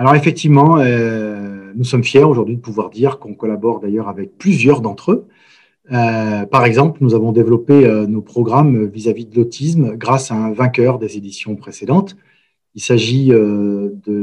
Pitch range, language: 110-140 Hz, French